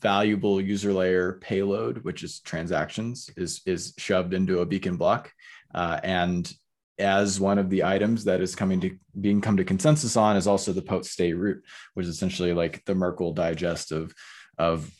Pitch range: 90-105 Hz